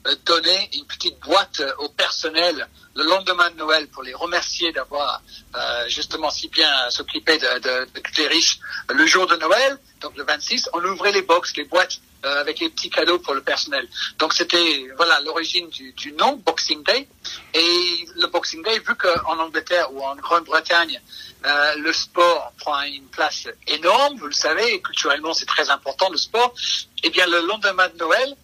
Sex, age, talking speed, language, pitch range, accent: male, 50-69, 180 wpm, French, 155-220 Hz, French